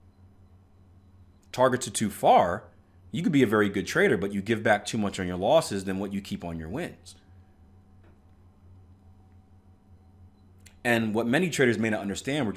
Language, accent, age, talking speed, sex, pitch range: English, American, 30-49, 165 wpm, male, 95-130 Hz